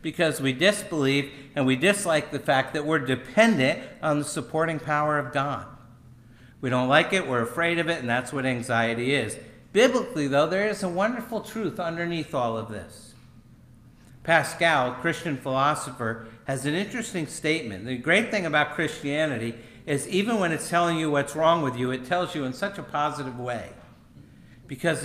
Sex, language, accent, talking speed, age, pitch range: male, English, American, 175 wpm, 50-69, 125-170 Hz